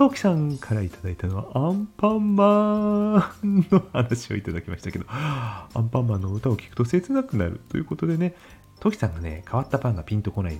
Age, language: 40-59, Japanese